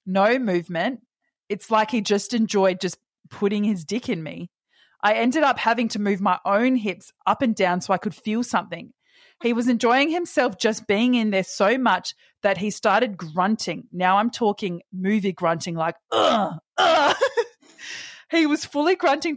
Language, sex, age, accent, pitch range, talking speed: English, female, 20-39, Australian, 180-240 Hz, 170 wpm